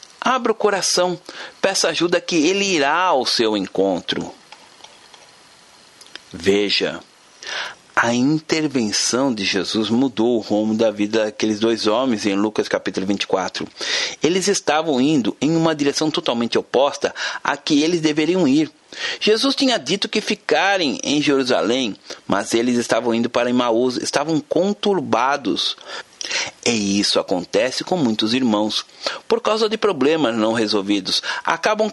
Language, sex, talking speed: Portuguese, male, 130 wpm